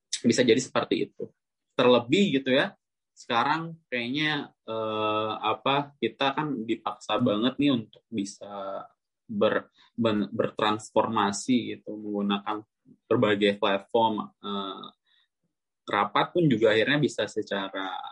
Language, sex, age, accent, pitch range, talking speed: Indonesian, male, 20-39, native, 100-115 Hz, 105 wpm